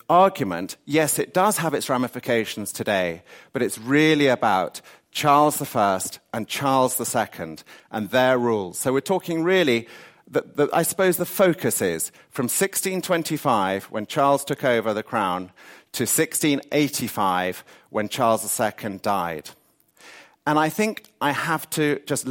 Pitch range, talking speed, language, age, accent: 115-165 Hz, 135 wpm, English, 40-59, British